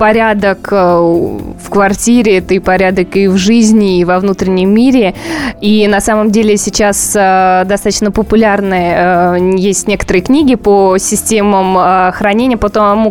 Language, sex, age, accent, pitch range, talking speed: Russian, female, 20-39, native, 195-220 Hz, 130 wpm